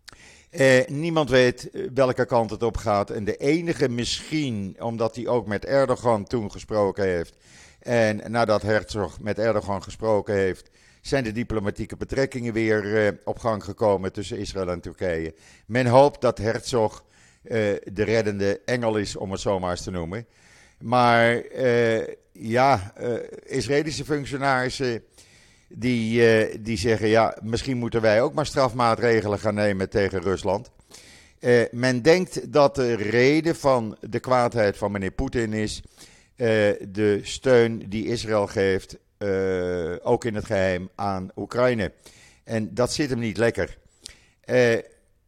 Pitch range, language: 105-125 Hz, Dutch